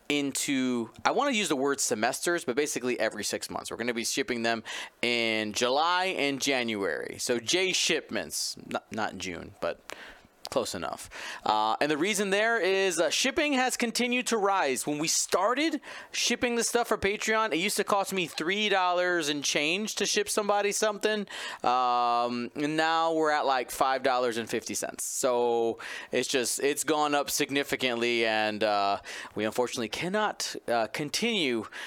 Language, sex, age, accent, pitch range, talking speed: English, male, 30-49, American, 130-195 Hz, 170 wpm